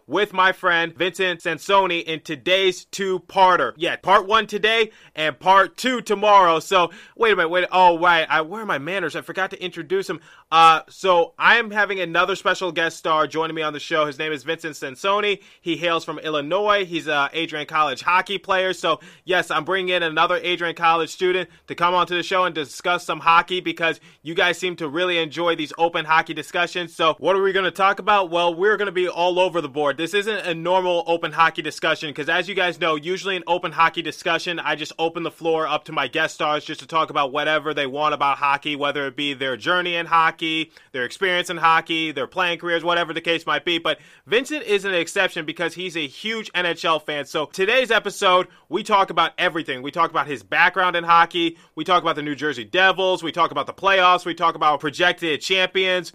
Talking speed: 220 wpm